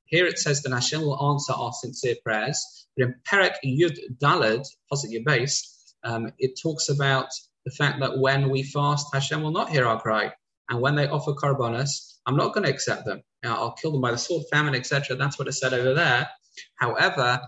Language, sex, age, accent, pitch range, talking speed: English, male, 20-39, British, 120-150 Hz, 200 wpm